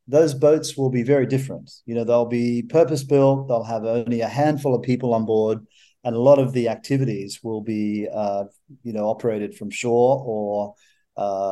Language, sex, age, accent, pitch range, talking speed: English, male, 40-59, Australian, 120-145 Hz, 195 wpm